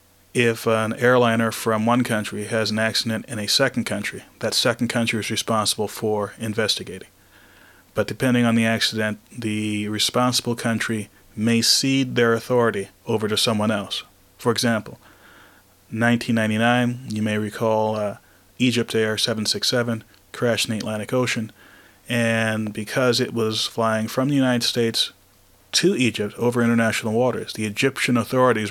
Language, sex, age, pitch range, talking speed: English, male, 30-49, 105-120 Hz, 140 wpm